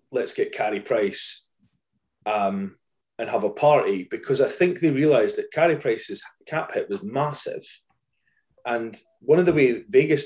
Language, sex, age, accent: English, male, 30-49, British